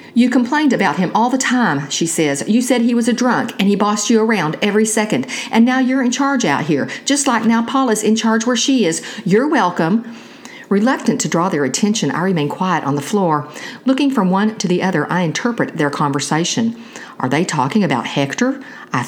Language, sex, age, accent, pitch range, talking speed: English, female, 50-69, American, 155-240 Hz, 210 wpm